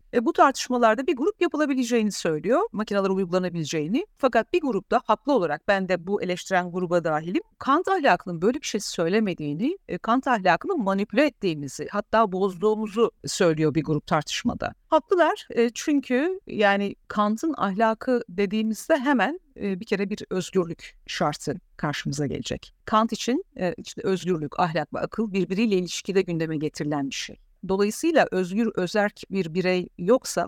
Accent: native